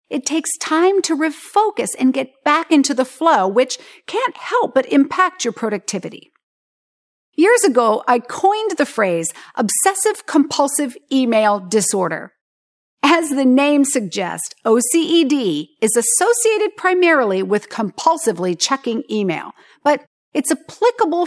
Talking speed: 120 wpm